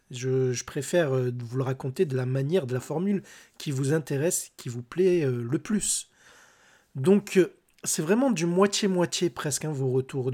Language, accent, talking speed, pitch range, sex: French, French, 185 wpm, 130-175 Hz, male